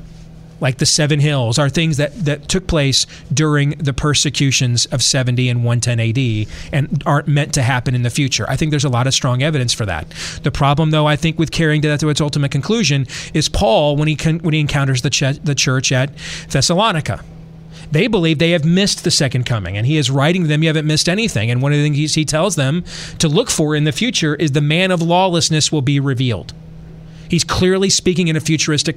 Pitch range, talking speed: 140-160 Hz, 215 wpm